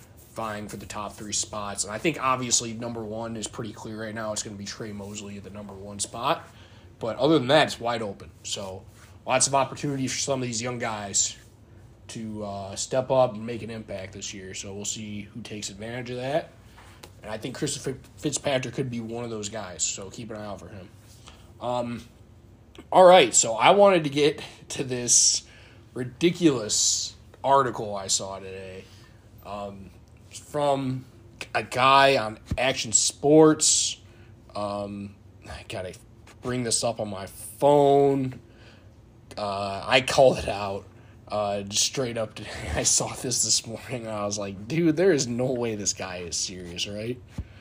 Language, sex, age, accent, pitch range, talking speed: English, male, 20-39, American, 105-125 Hz, 180 wpm